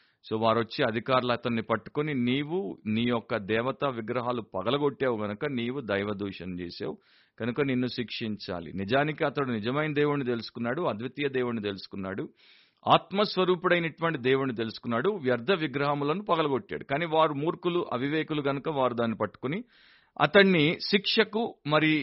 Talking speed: 120 wpm